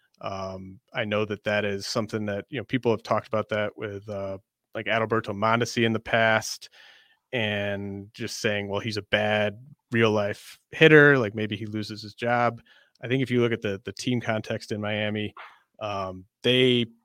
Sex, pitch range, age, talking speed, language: male, 105-120 Hz, 30-49, 185 wpm, English